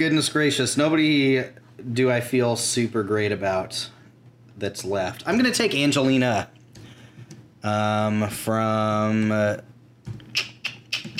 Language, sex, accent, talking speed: English, male, American, 100 wpm